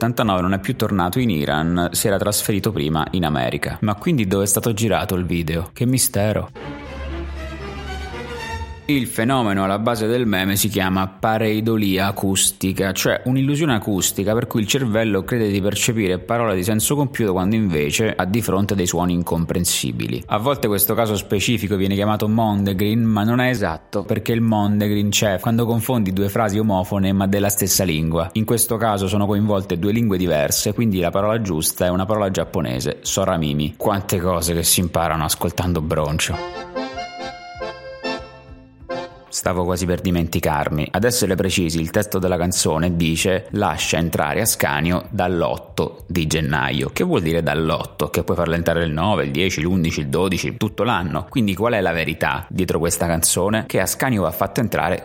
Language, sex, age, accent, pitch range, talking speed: Italian, male, 30-49, native, 85-105 Hz, 165 wpm